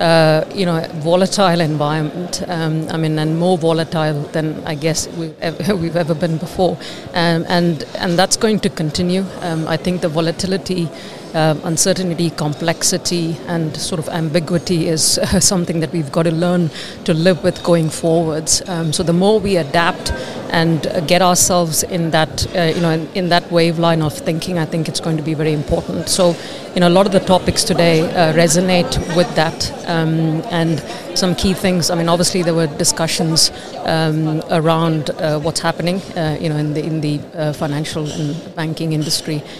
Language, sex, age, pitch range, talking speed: English, female, 50-69, 160-180 Hz, 185 wpm